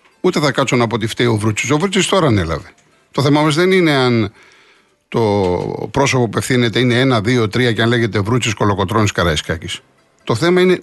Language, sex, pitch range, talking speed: Greek, male, 110-140 Hz, 195 wpm